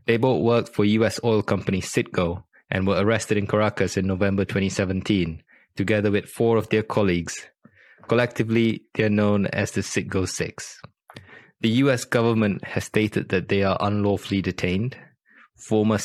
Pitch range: 95-110 Hz